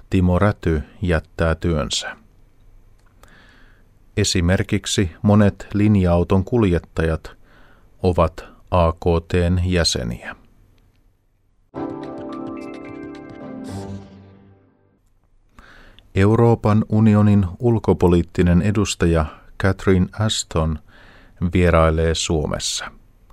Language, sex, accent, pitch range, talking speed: Finnish, male, native, 85-100 Hz, 50 wpm